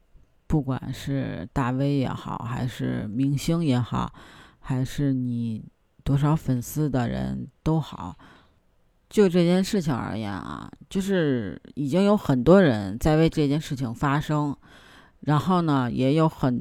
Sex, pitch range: female, 125-175 Hz